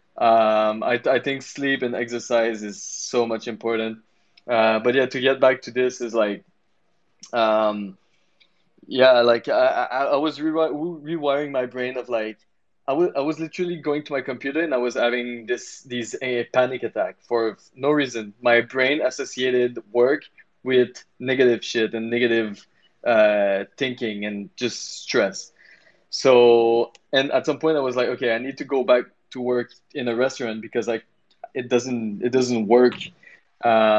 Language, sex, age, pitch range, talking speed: English, male, 20-39, 120-140 Hz, 170 wpm